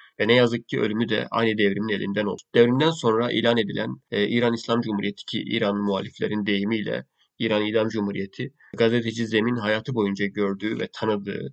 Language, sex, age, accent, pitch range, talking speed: Turkish, male, 30-49, native, 105-120 Hz, 165 wpm